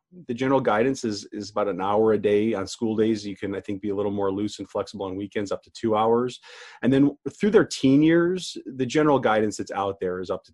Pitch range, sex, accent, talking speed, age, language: 95-125 Hz, male, American, 255 wpm, 30-49, English